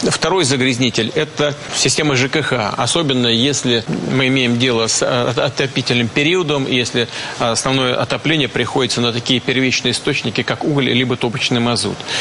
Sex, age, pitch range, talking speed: male, 40-59, 125-145 Hz, 130 wpm